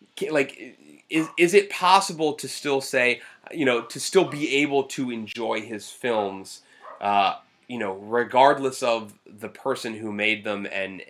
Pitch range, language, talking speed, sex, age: 100-135 Hz, English, 155 wpm, male, 20-39